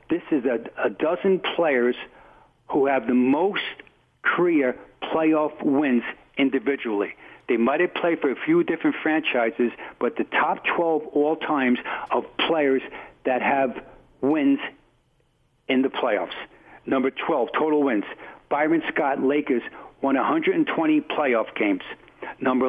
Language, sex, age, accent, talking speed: English, male, 60-79, American, 125 wpm